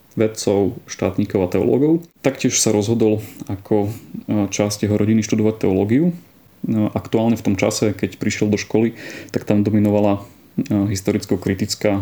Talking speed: 125 wpm